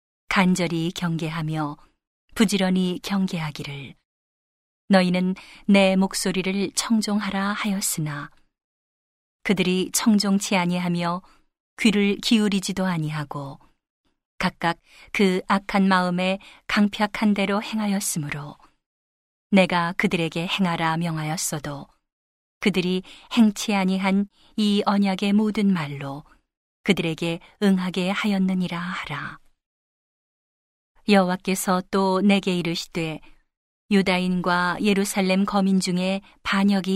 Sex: female